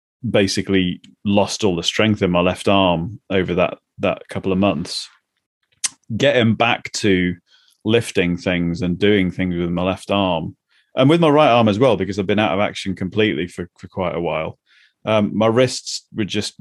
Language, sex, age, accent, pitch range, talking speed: English, male, 30-49, British, 95-110 Hz, 185 wpm